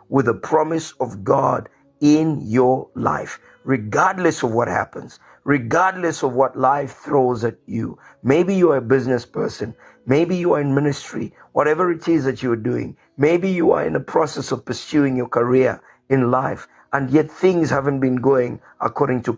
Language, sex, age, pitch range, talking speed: English, male, 50-69, 120-155 Hz, 175 wpm